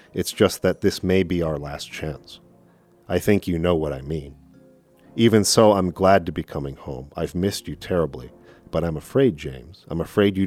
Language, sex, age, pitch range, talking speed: English, male, 40-59, 80-95 Hz, 200 wpm